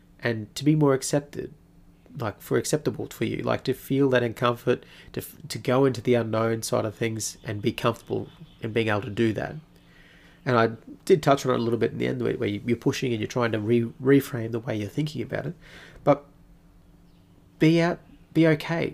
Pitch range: 115-145 Hz